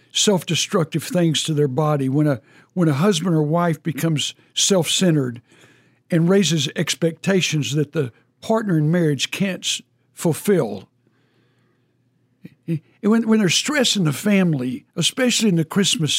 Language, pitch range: English, 155-205 Hz